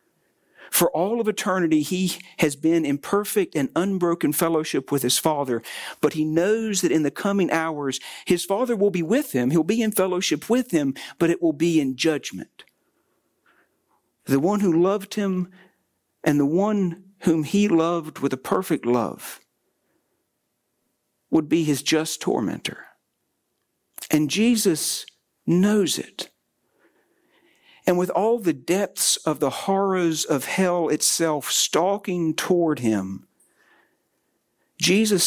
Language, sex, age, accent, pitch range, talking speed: English, male, 60-79, American, 150-195 Hz, 135 wpm